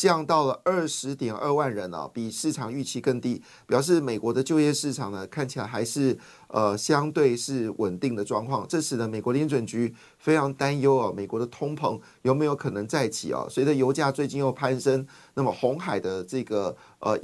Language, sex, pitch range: Chinese, male, 115-140 Hz